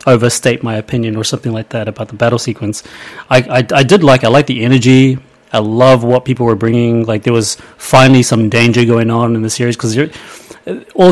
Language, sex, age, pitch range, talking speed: English, male, 30-49, 110-130 Hz, 210 wpm